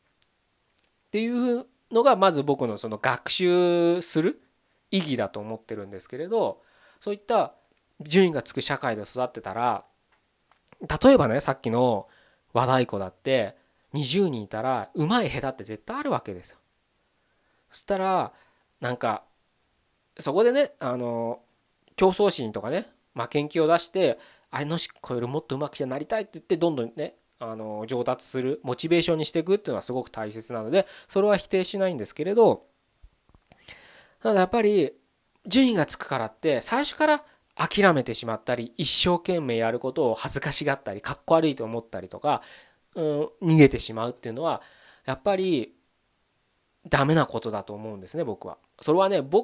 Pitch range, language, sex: 120-190 Hz, Japanese, male